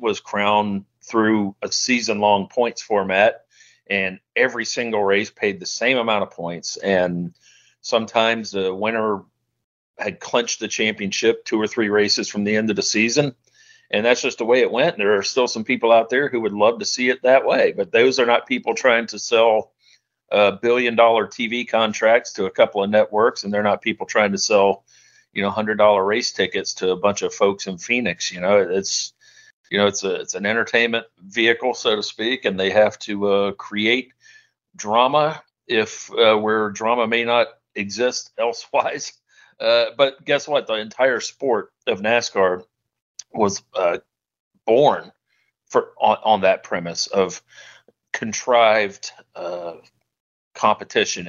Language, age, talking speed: English, 40-59, 170 wpm